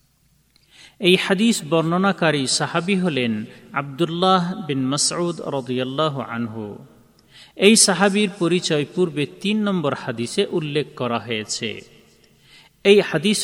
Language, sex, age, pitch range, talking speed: Bengali, male, 40-59, 135-180 Hz, 100 wpm